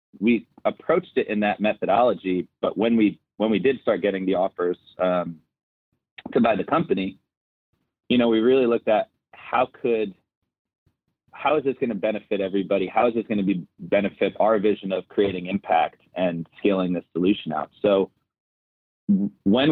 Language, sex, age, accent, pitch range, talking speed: English, male, 30-49, American, 90-105 Hz, 165 wpm